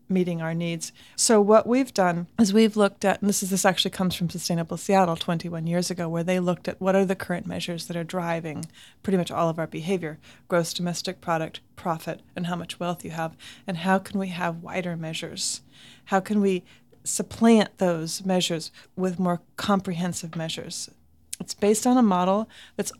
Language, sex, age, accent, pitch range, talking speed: English, female, 30-49, American, 170-195 Hz, 195 wpm